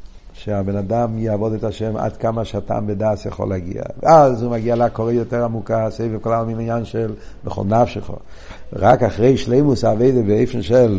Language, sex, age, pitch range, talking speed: Hebrew, male, 60-79, 120-180 Hz, 165 wpm